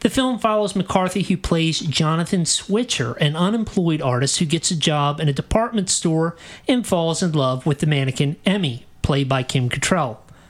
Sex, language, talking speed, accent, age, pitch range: male, English, 175 wpm, American, 40-59, 150-195 Hz